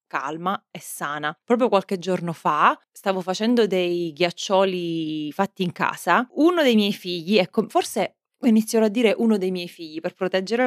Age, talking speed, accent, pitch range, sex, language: 20-39, 165 wpm, native, 175-225 Hz, female, Italian